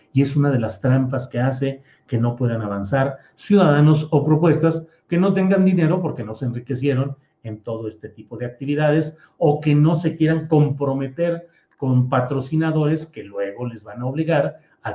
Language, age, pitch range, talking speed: Spanish, 40-59, 120-155 Hz, 175 wpm